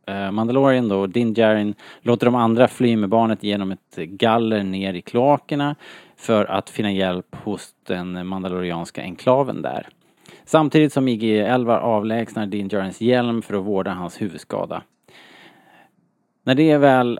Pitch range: 100-125 Hz